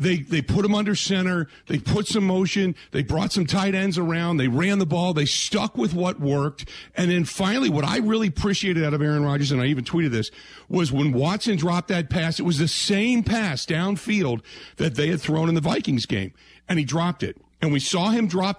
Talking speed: 225 wpm